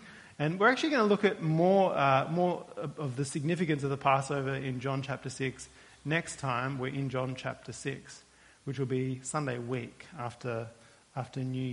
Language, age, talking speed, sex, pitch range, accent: English, 30-49, 180 wpm, male, 130-165 Hz, Australian